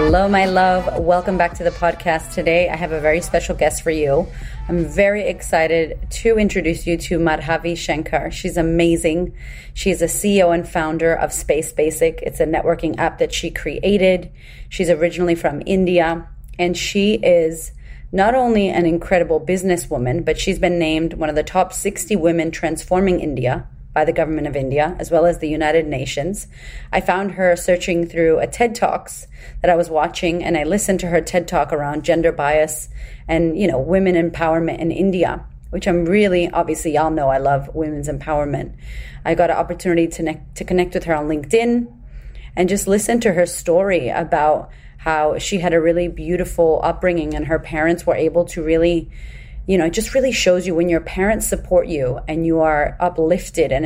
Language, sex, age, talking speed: English, female, 30-49, 185 wpm